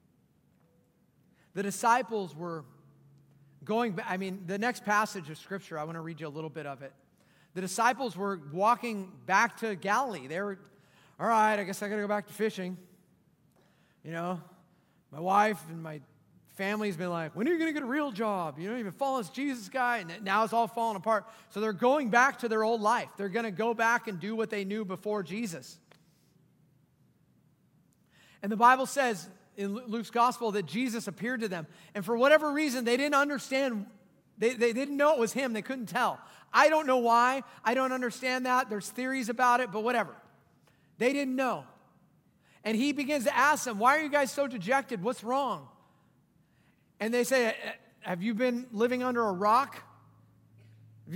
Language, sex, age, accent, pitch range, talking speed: English, male, 30-49, American, 190-250 Hz, 195 wpm